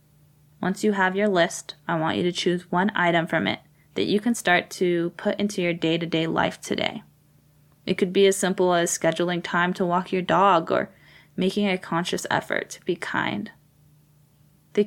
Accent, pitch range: American, 165-200 Hz